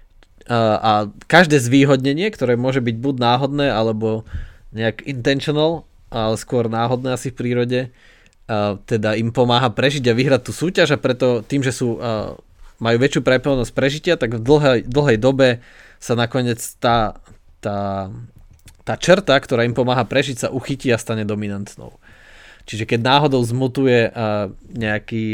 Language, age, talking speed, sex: Slovak, 20-39, 140 wpm, male